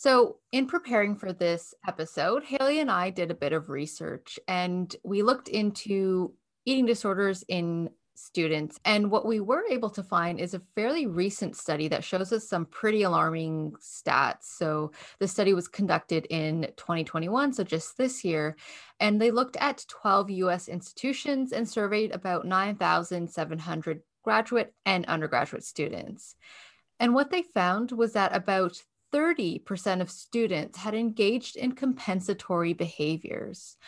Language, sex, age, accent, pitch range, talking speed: English, female, 20-39, American, 170-220 Hz, 150 wpm